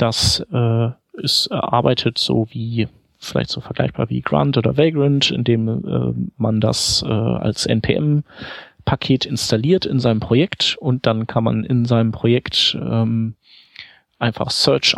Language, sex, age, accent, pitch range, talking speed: German, male, 40-59, German, 110-130 Hz, 135 wpm